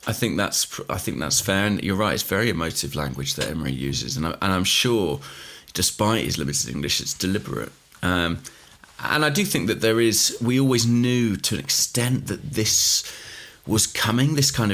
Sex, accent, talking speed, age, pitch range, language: male, British, 195 wpm, 30-49, 95-115 Hz, English